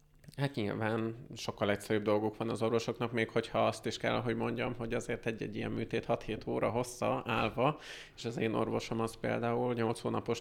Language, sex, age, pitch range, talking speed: Hungarian, male, 20-39, 115-125 Hz, 185 wpm